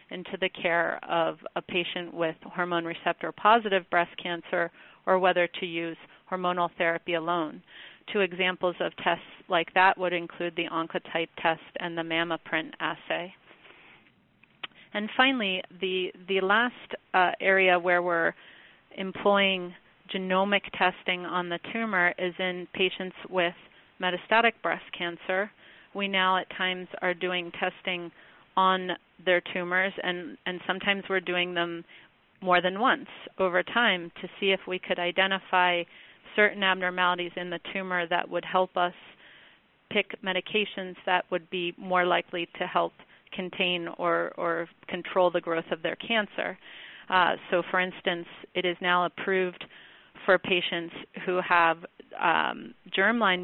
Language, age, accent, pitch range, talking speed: English, 30-49, American, 175-190 Hz, 140 wpm